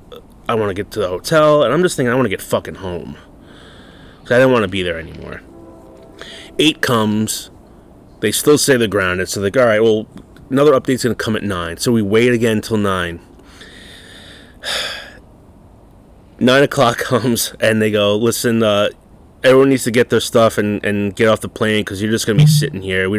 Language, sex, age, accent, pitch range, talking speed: English, male, 30-49, American, 100-125 Hz, 205 wpm